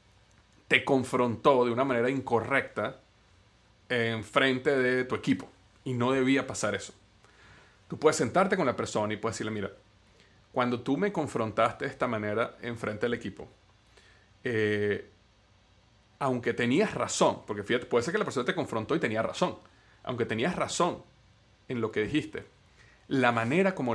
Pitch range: 105-130 Hz